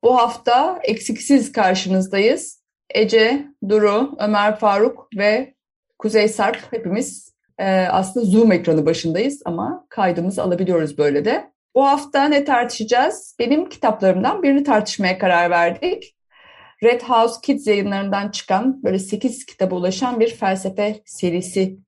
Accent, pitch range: native, 190-265 Hz